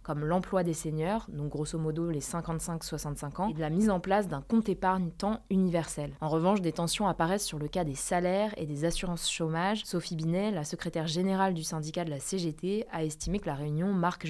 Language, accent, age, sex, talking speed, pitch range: French, French, 20-39, female, 210 wpm, 160-195 Hz